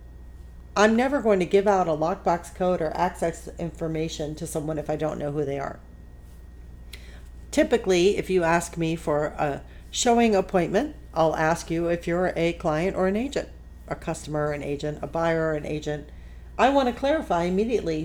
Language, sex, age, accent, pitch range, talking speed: English, female, 50-69, American, 140-195 Hz, 175 wpm